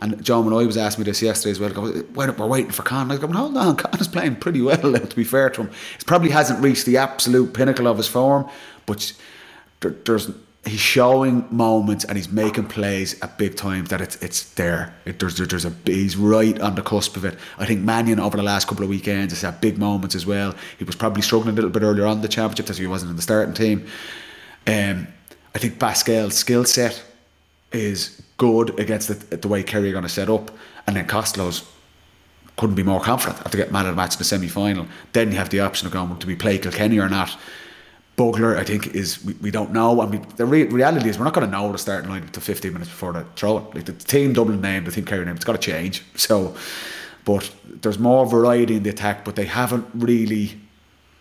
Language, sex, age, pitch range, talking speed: English, male, 30-49, 95-115 Hz, 240 wpm